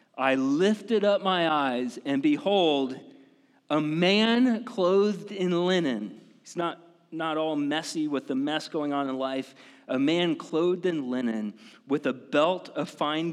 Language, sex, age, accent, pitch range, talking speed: English, male, 40-59, American, 155-210 Hz, 155 wpm